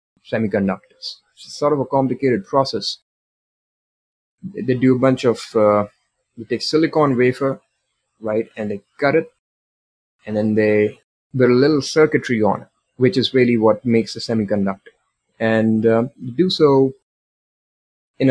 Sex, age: male, 30-49